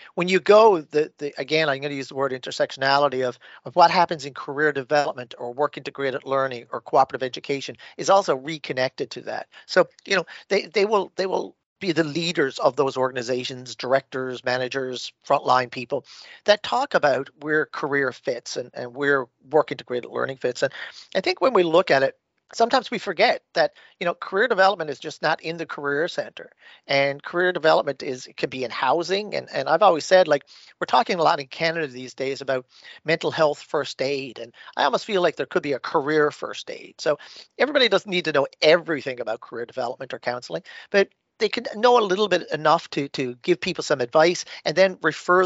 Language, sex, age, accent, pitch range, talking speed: English, male, 40-59, American, 135-175 Hz, 205 wpm